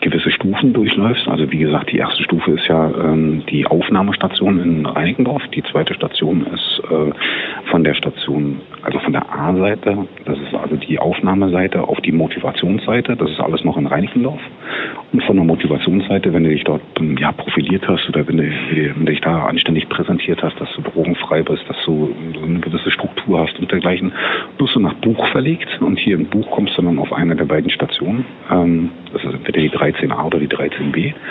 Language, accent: German, German